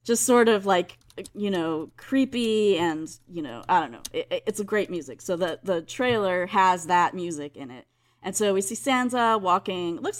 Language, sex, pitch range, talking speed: English, female, 165-210 Hz, 205 wpm